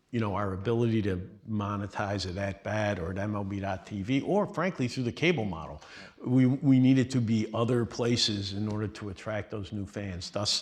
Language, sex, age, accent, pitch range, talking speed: English, male, 50-69, American, 95-120 Hz, 185 wpm